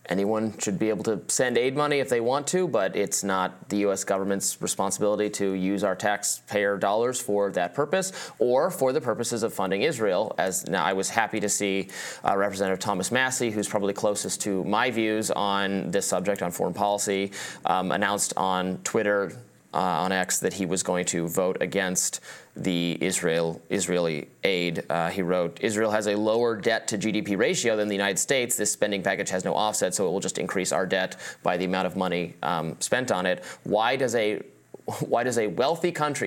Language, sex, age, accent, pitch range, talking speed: English, male, 20-39, American, 95-120 Hz, 200 wpm